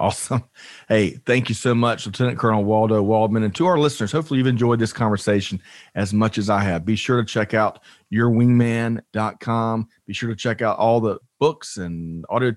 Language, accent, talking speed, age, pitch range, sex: English, American, 190 wpm, 40-59, 100-120 Hz, male